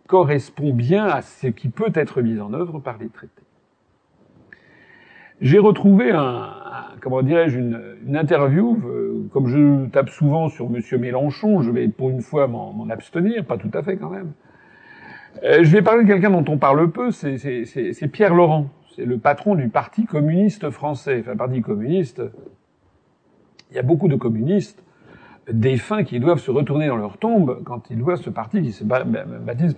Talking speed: 185 wpm